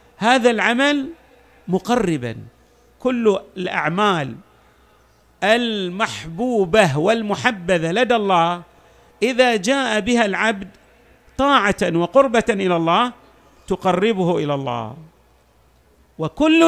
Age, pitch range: 50-69, 160-240 Hz